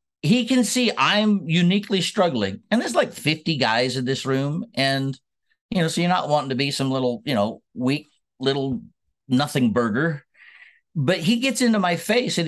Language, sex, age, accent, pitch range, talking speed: English, male, 50-69, American, 150-205 Hz, 185 wpm